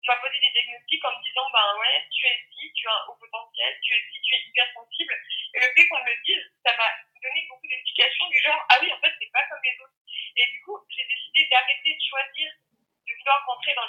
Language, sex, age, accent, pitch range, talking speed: French, female, 20-39, French, 220-295 Hz, 260 wpm